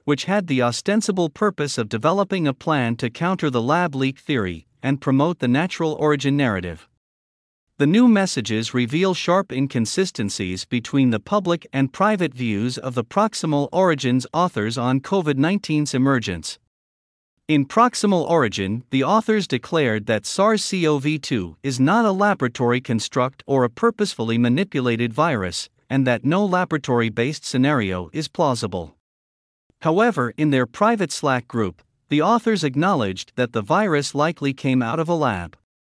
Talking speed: 145 wpm